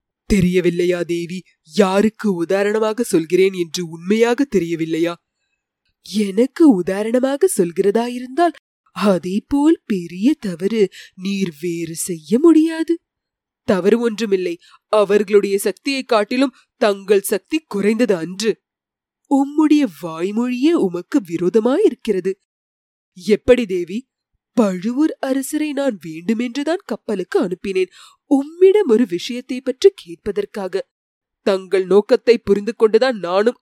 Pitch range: 185-260 Hz